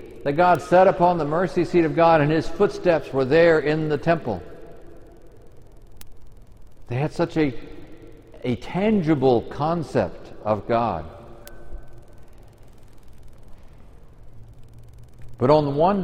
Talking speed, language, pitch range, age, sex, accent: 110 wpm, English, 115-175 Hz, 60-79, male, American